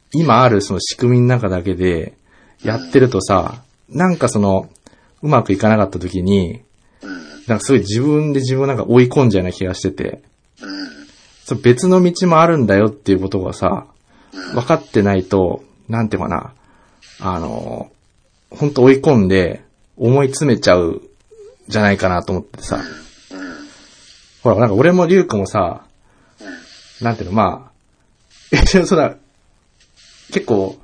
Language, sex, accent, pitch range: Japanese, male, native, 95-135 Hz